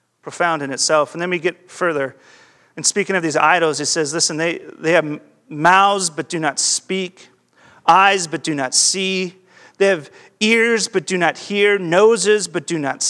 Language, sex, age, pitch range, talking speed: Russian, male, 40-59, 145-175 Hz, 185 wpm